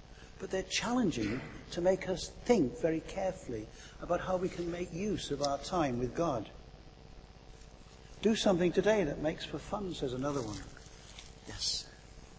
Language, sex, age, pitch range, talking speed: English, male, 60-79, 130-185 Hz, 150 wpm